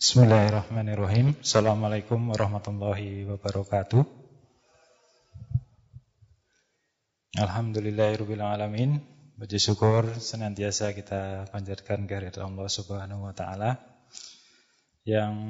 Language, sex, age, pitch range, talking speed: Indonesian, male, 20-39, 100-115 Hz, 60 wpm